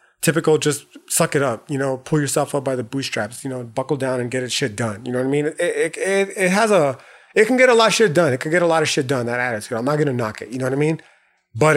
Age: 30-49